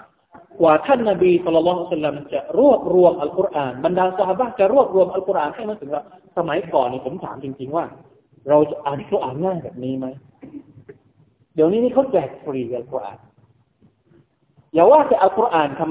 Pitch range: 155-245 Hz